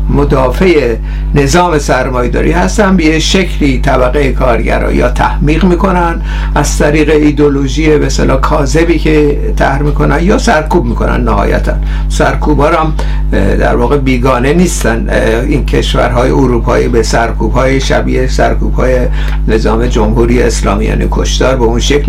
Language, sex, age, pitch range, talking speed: Persian, male, 60-79, 130-175 Hz, 120 wpm